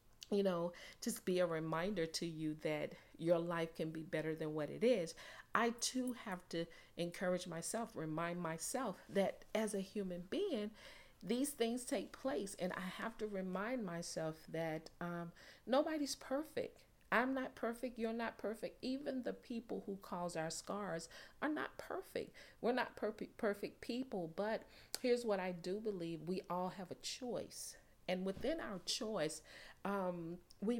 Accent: American